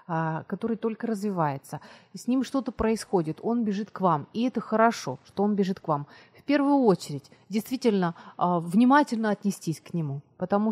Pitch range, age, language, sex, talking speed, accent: 175-235 Hz, 30-49, Ukrainian, female, 160 wpm, native